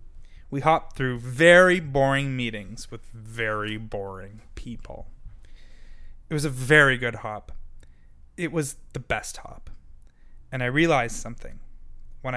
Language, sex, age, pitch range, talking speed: English, male, 20-39, 95-150 Hz, 125 wpm